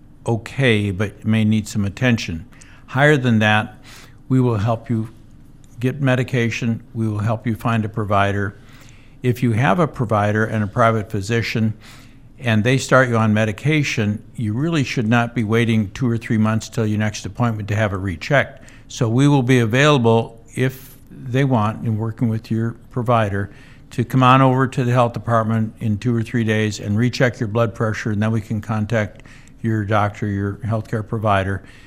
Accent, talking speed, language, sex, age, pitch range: American, 180 wpm, English, male, 60-79, 110-125 Hz